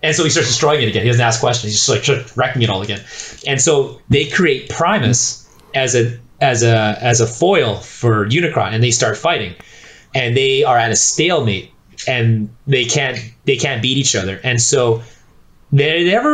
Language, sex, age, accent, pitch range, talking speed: English, male, 30-49, American, 115-145 Hz, 200 wpm